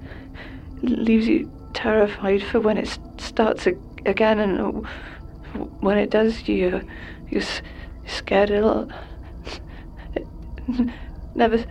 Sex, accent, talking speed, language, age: female, British, 120 wpm, English, 30-49